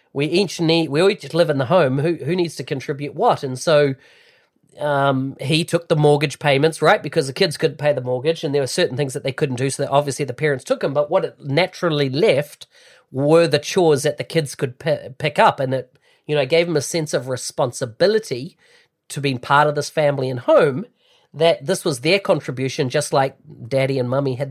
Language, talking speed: English, 225 wpm